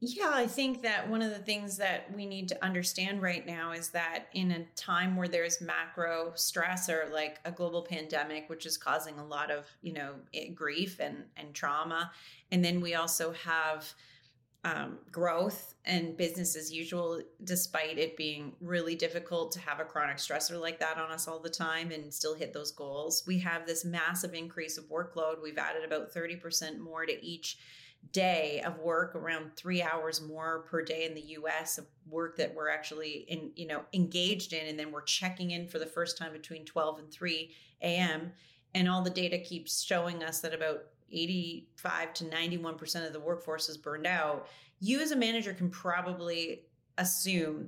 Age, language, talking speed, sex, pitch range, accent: 30-49, English, 190 wpm, female, 155-180 Hz, American